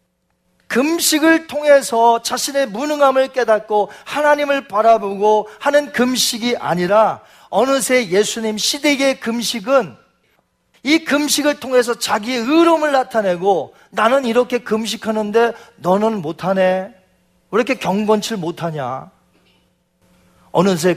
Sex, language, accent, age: male, Korean, native, 40-59